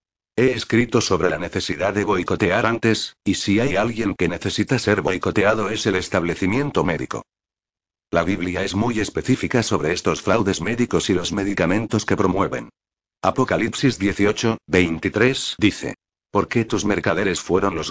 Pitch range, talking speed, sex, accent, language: 95-115 Hz, 145 wpm, male, Spanish, Spanish